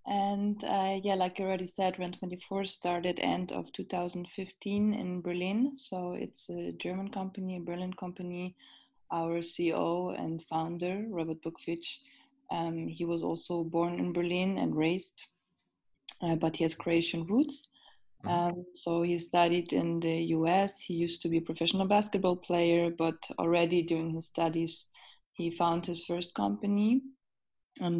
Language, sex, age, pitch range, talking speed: English, female, 20-39, 160-185 Hz, 150 wpm